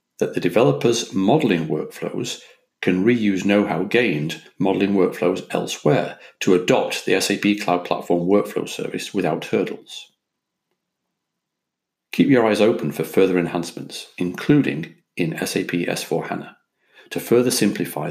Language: English